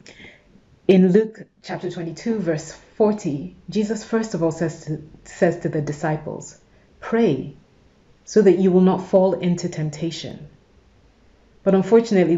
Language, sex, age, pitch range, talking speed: English, female, 30-49, 155-185 Hz, 125 wpm